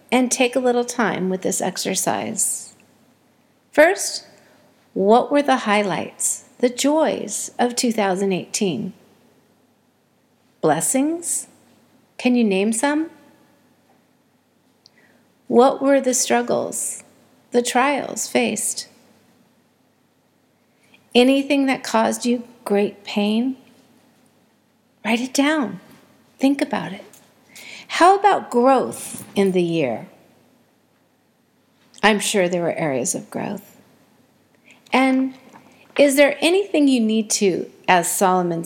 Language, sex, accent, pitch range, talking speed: English, female, American, 215-265 Hz, 100 wpm